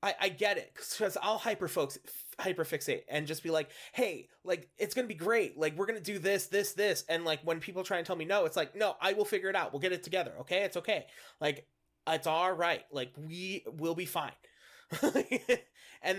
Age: 20-39